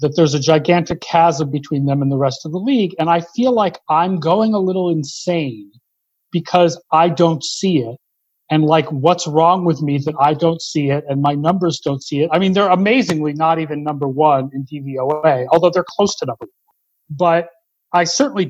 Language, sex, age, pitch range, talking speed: English, male, 40-59, 150-190 Hz, 205 wpm